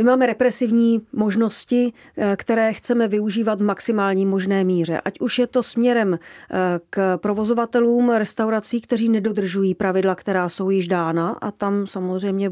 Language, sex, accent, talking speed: Czech, female, native, 140 wpm